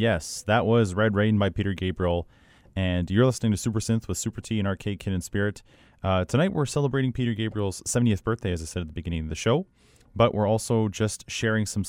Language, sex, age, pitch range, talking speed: English, male, 30-49, 90-110 Hz, 225 wpm